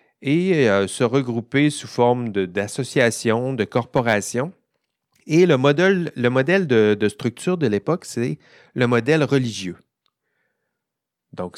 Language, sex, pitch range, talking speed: French, male, 105-145 Hz, 130 wpm